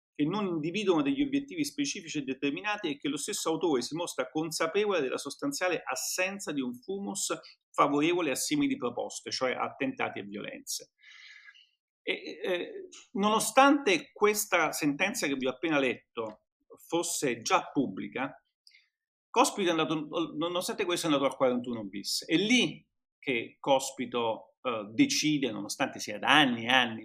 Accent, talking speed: native, 140 wpm